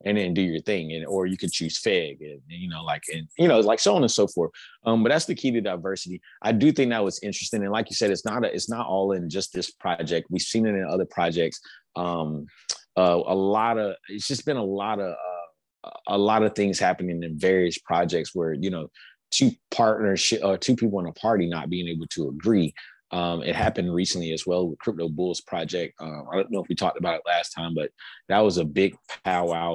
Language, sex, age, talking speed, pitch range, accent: English, male, 30-49, 245 wpm, 85-105 Hz, American